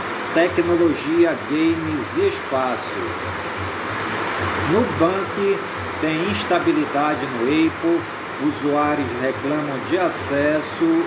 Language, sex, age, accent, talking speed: Portuguese, male, 40-59, Brazilian, 70 wpm